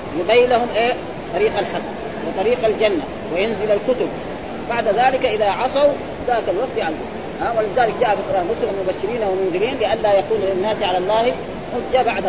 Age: 30-49